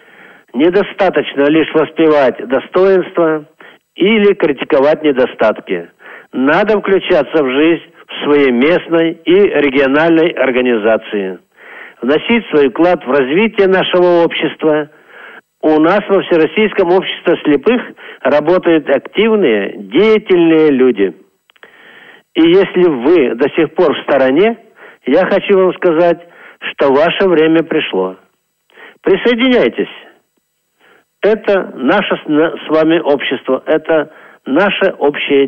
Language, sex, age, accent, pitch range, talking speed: Russian, male, 50-69, native, 145-210 Hz, 100 wpm